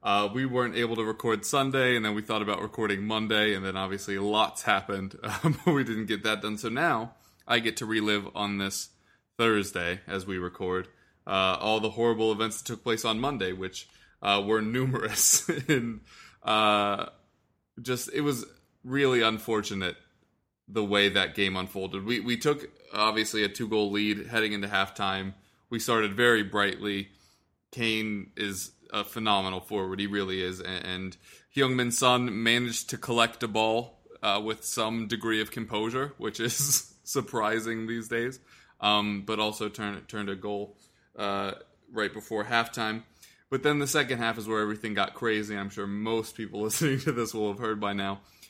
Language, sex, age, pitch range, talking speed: English, male, 20-39, 100-115 Hz, 170 wpm